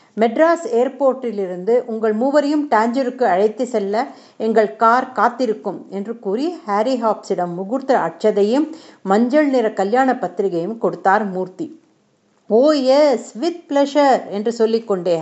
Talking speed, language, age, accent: 110 wpm, Tamil, 50-69, native